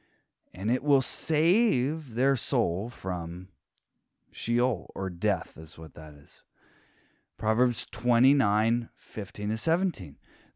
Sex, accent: male, American